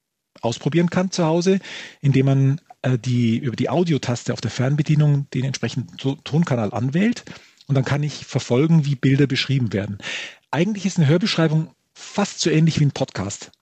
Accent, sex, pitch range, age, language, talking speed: German, male, 130-165 Hz, 40-59, German, 160 wpm